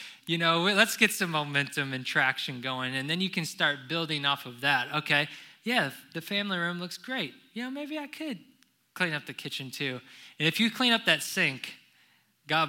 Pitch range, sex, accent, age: 140-180 Hz, male, American, 20-39